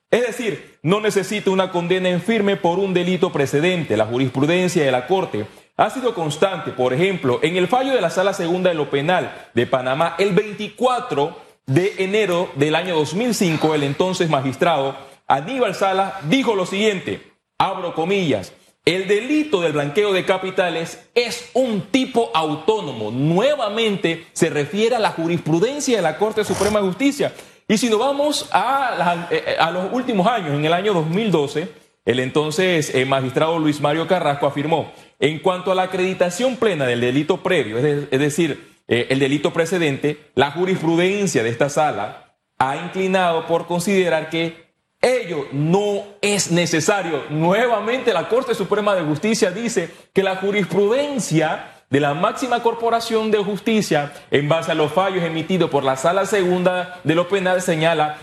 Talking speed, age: 155 wpm, 30-49